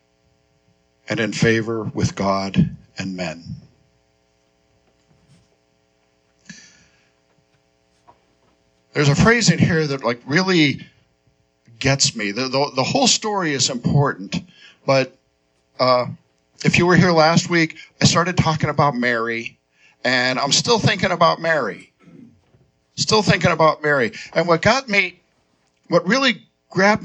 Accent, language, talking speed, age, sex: American, English, 120 wpm, 50-69, male